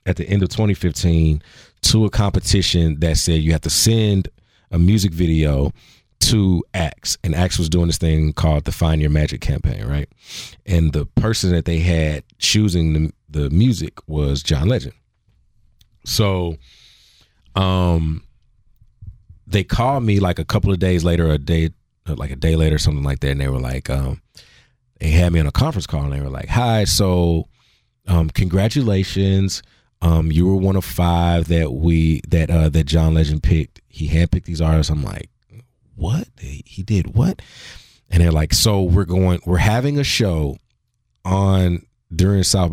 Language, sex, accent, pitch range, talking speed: English, male, American, 75-95 Hz, 175 wpm